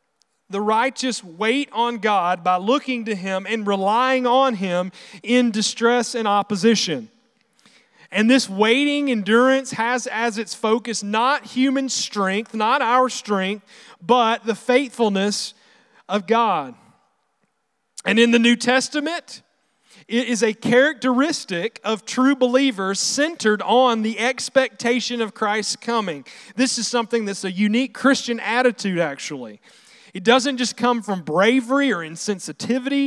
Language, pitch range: English, 185-245 Hz